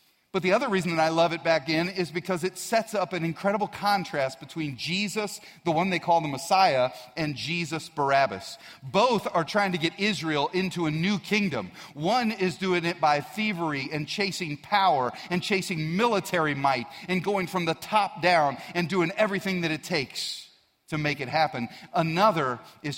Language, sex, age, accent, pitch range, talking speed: English, male, 40-59, American, 140-185 Hz, 185 wpm